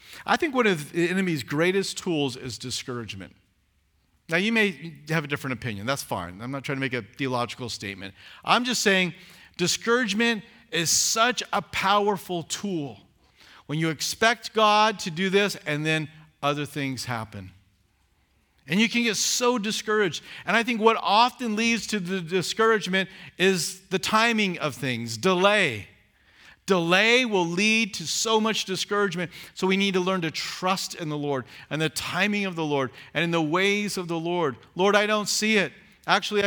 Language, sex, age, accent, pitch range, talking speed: English, male, 50-69, American, 135-200 Hz, 175 wpm